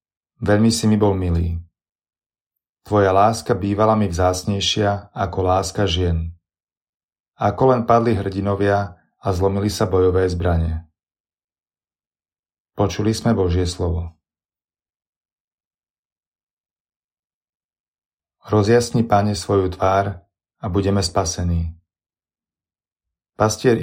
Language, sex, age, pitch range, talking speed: Slovak, male, 30-49, 90-110 Hz, 85 wpm